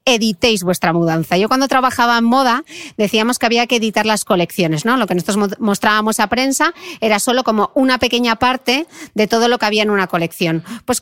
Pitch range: 185-245 Hz